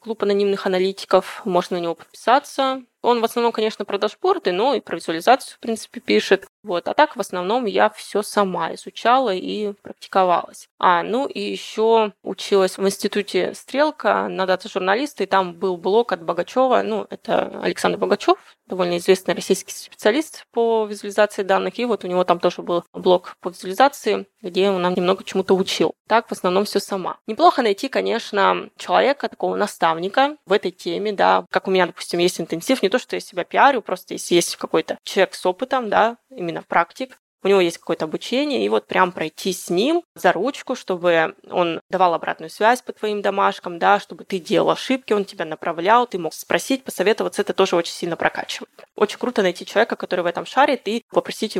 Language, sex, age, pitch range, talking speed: Russian, female, 20-39, 185-225 Hz, 185 wpm